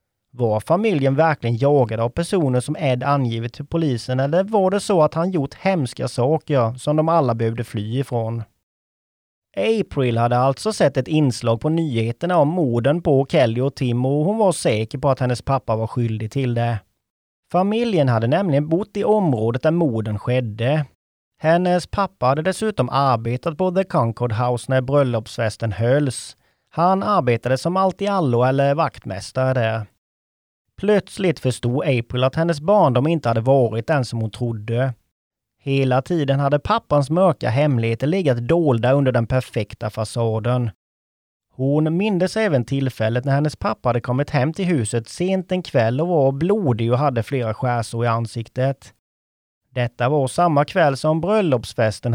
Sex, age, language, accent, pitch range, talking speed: male, 30-49, English, Swedish, 115-160 Hz, 155 wpm